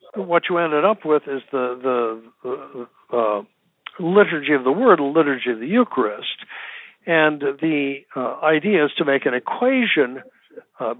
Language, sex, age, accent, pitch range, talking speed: English, male, 60-79, American, 130-175 Hz, 155 wpm